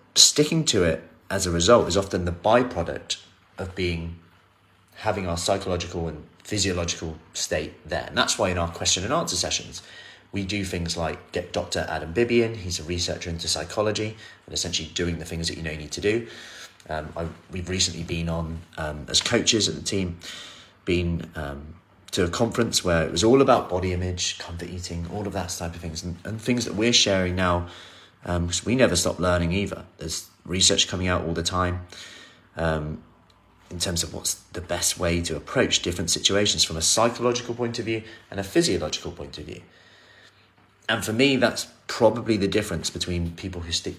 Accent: British